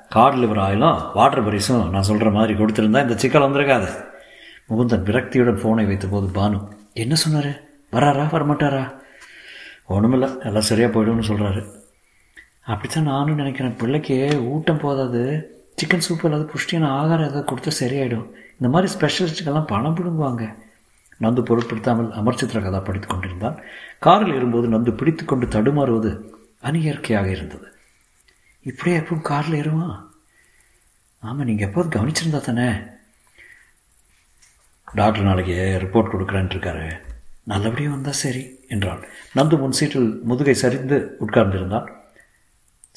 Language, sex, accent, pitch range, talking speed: Tamil, male, native, 110-145 Hz, 115 wpm